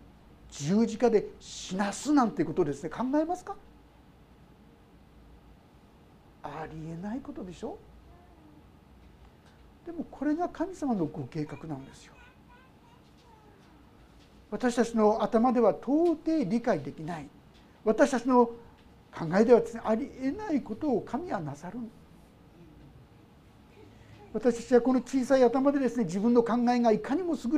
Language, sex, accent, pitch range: Japanese, male, native, 205-290 Hz